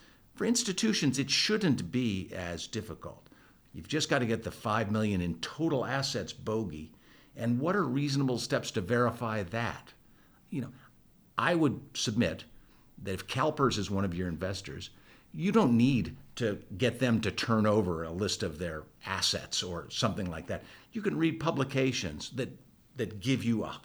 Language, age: English, 50-69